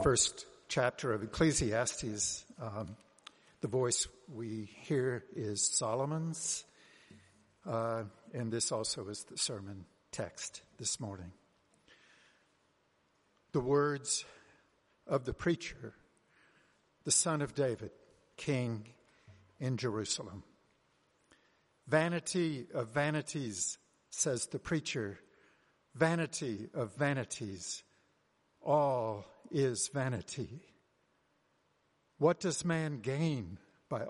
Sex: male